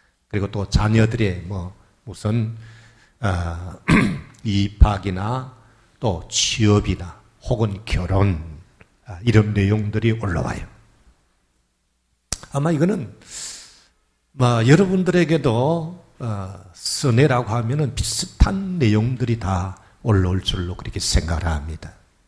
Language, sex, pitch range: Korean, male, 95-125 Hz